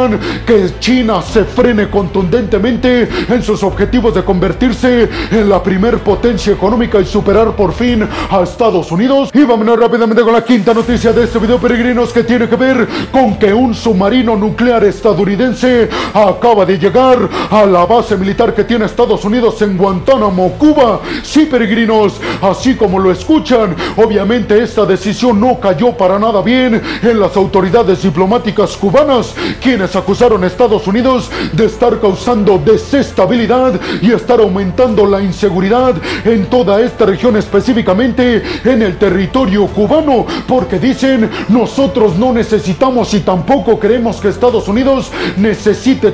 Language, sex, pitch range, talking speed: Spanish, male, 200-245 Hz, 145 wpm